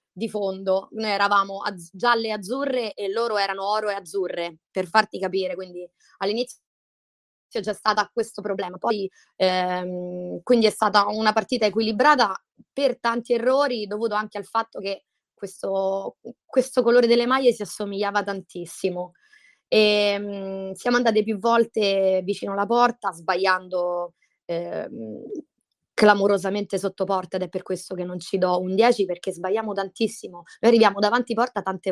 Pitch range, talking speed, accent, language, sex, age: 185-230 Hz, 150 wpm, native, Italian, female, 20-39